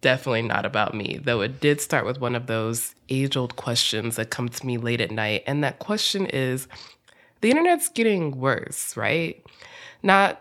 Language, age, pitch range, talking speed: English, 20-39, 135-175 Hz, 180 wpm